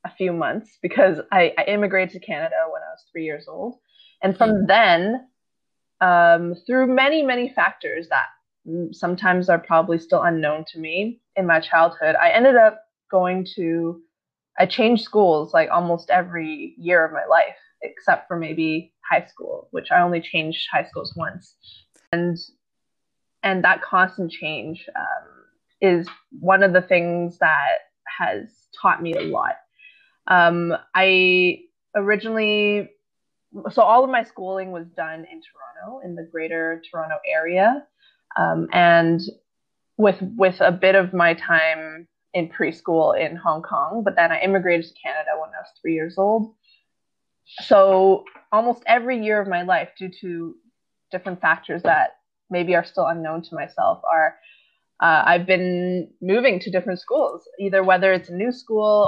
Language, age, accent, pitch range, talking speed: English, 20-39, American, 170-220 Hz, 155 wpm